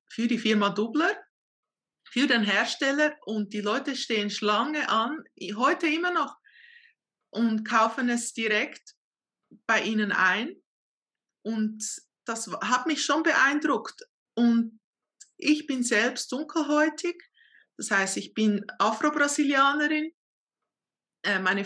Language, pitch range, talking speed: German, 215-290 Hz, 110 wpm